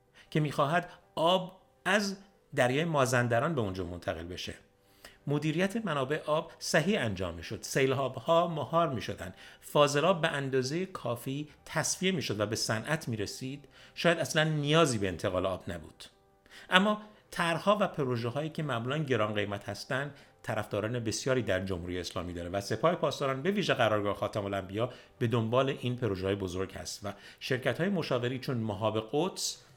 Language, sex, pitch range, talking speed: Persian, male, 105-150 Hz, 140 wpm